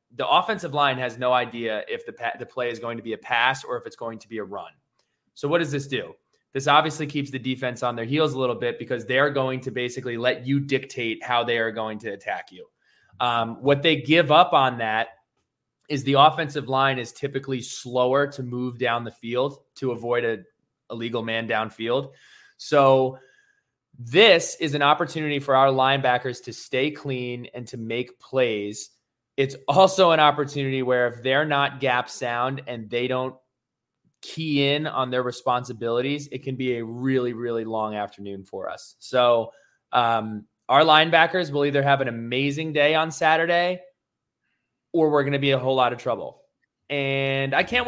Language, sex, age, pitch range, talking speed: English, male, 20-39, 120-150 Hz, 185 wpm